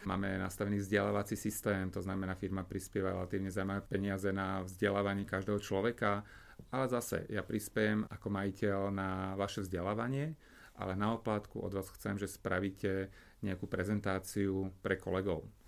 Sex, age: male, 30-49